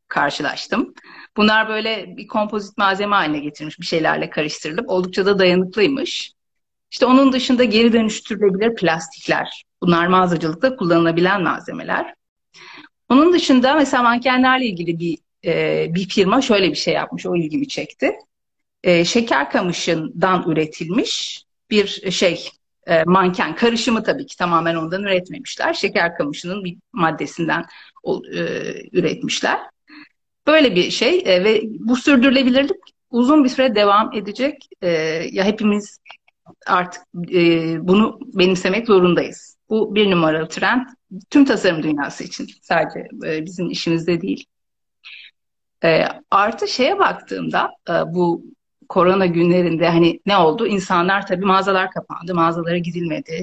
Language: Turkish